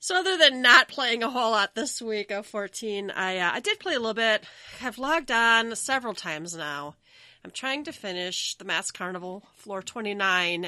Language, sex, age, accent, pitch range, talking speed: English, female, 30-49, American, 170-235 Hz, 195 wpm